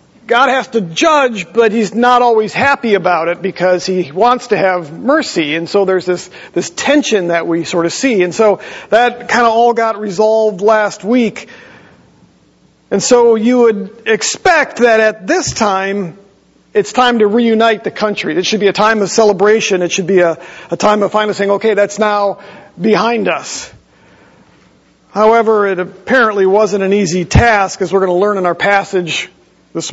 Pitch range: 180-225 Hz